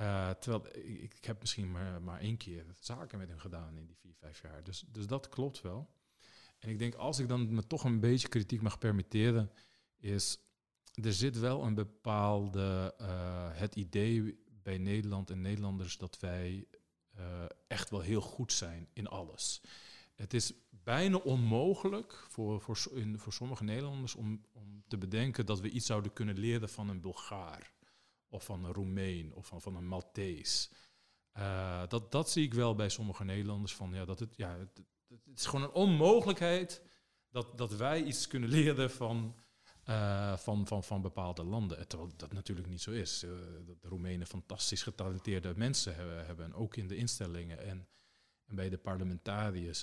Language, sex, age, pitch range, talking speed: Dutch, male, 50-69, 95-115 Hz, 180 wpm